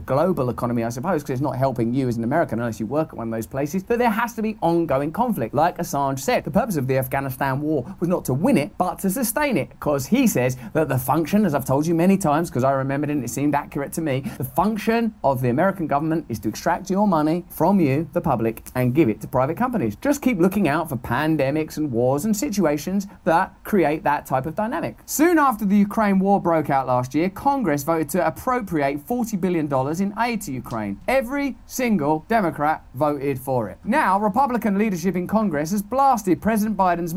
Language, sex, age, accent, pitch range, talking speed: English, male, 30-49, British, 145-205 Hz, 225 wpm